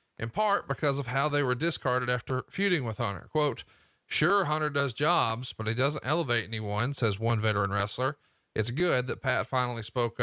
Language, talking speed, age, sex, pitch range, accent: English, 190 wpm, 40-59, male, 115-145 Hz, American